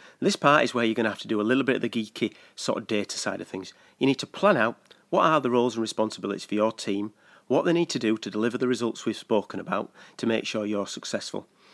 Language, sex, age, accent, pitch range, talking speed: English, male, 40-59, British, 105-150 Hz, 270 wpm